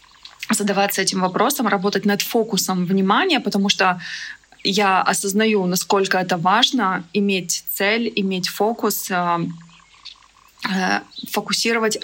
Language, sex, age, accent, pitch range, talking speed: Russian, female, 20-39, native, 195-225 Hz, 105 wpm